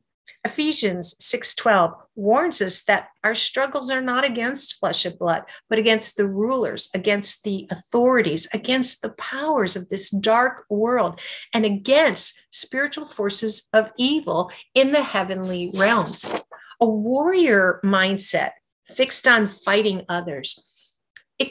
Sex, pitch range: female, 195-260 Hz